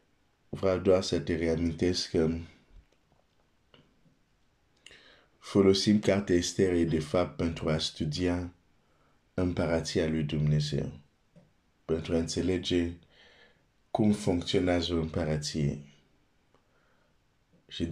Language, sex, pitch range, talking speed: Romanian, male, 80-95 Hz, 70 wpm